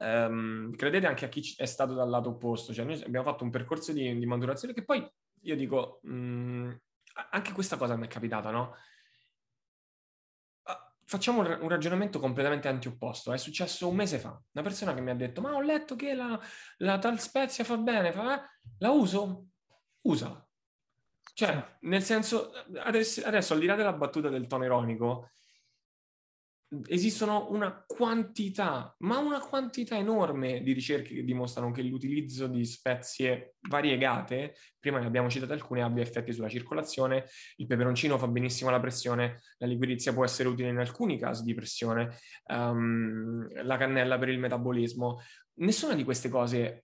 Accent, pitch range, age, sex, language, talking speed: native, 120-185 Hz, 20-39, male, Italian, 160 wpm